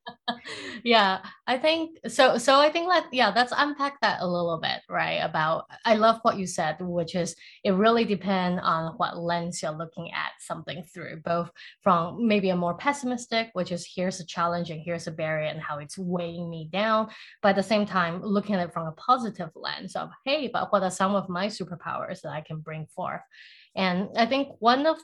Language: English